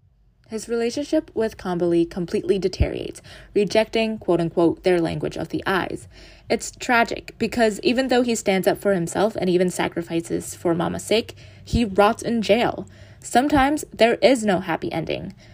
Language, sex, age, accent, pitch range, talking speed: English, female, 20-39, American, 170-230 Hz, 150 wpm